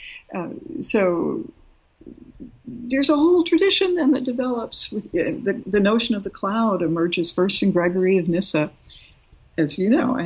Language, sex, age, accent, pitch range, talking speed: English, female, 60-79, American, 160-210 Hz, 160 wpm